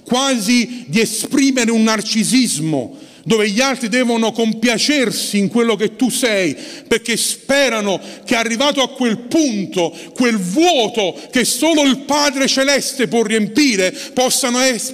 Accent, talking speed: native, 130 wpm